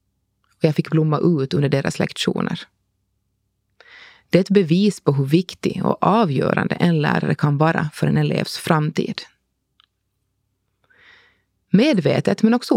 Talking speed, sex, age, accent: 125 wpm, female, 30-49, native